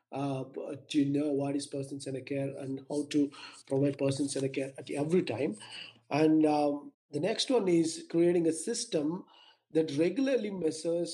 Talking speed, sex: 155 wpm, male